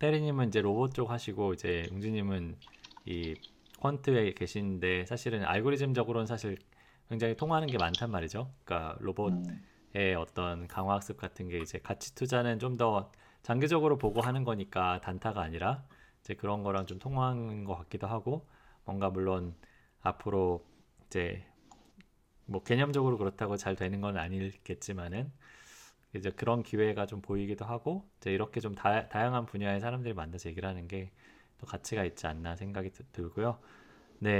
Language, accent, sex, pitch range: Korean, native, male, 90-115 Hz